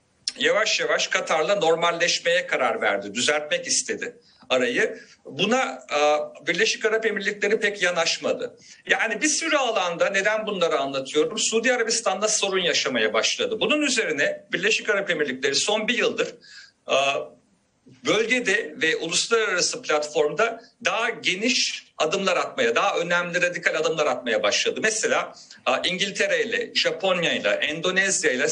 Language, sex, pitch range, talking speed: Turkish, male, 180-250 Hz, 120 wpm